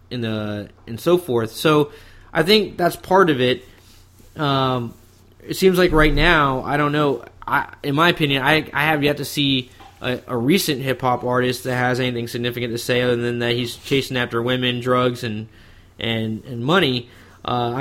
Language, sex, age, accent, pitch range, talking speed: English, male, 20-39, American, 120-150 Hz, 190 wpm